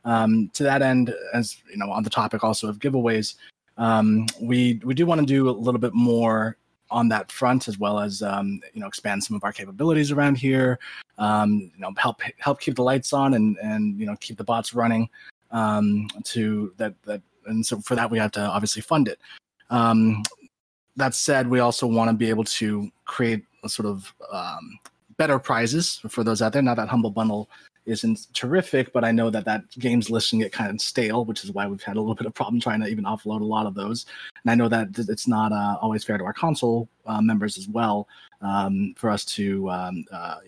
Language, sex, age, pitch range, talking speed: English, male, 20-39, 110-130 Hz, 220 wpm